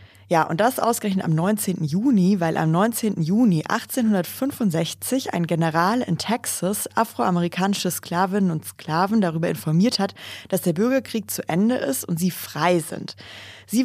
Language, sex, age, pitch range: German, female, 20-39, 165-210 Hz